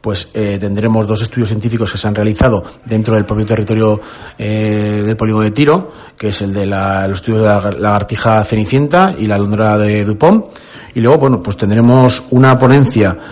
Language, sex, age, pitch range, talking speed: Spanish, male, 40-59, 105-120 Hz, 190 wpm